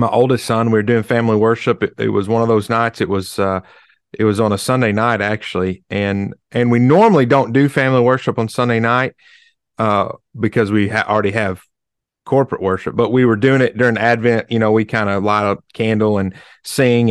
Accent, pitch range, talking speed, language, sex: American, 110-125 Hz, 210 wpm, English, male